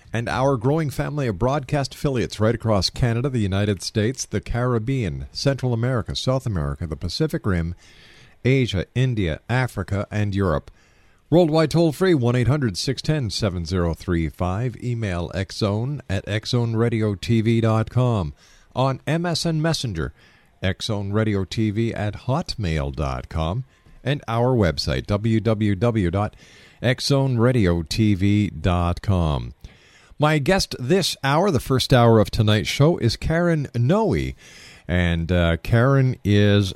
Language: English